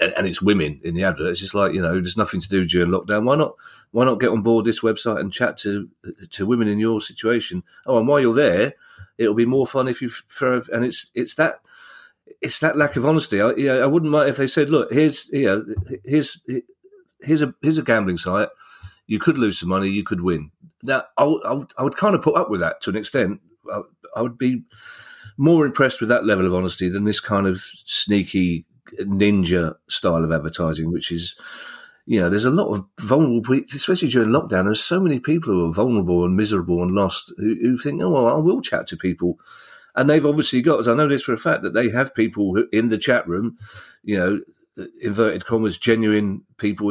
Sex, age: male, 40-59